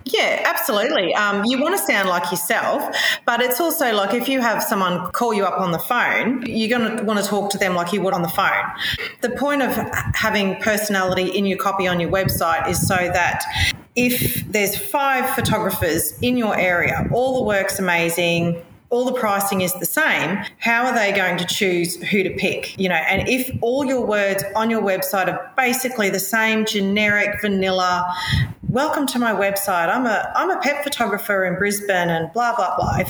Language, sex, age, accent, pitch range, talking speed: English, female, 30-49, Australian, 175-225 Hz, 200 wpm